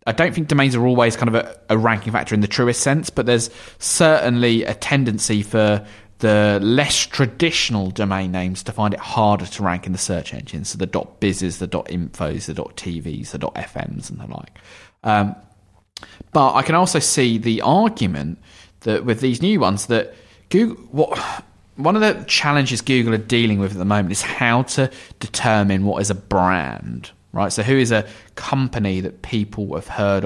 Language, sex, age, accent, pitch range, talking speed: English, male, 20-39, British, 95-115 Hz, 185 wpm